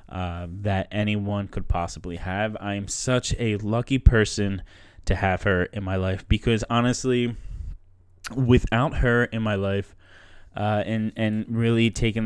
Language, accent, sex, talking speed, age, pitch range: English, American, male, 140 wpm, 10-29, 95-120 Hz